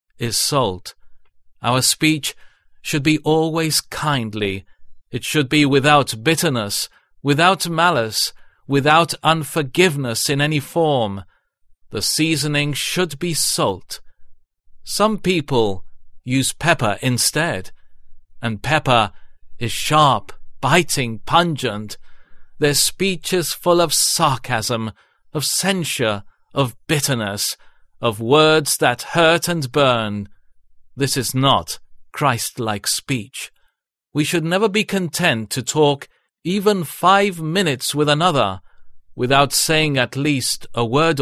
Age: 40-59